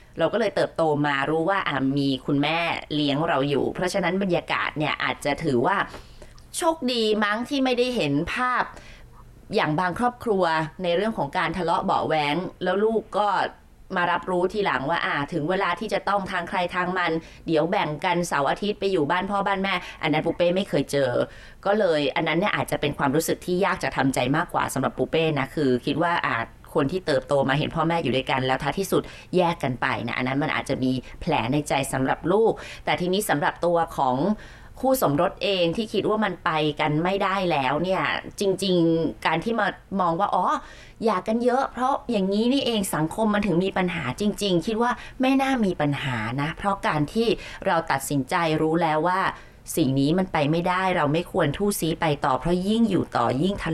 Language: Thai